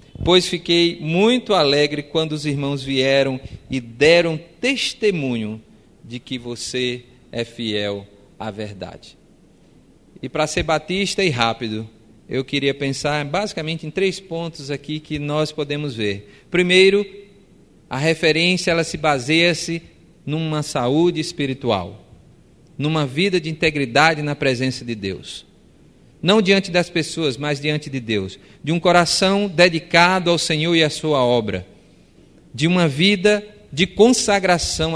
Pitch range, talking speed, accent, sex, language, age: 125-165 Hz, 130 wpm, Brazilian, male, Portuguese, 40-59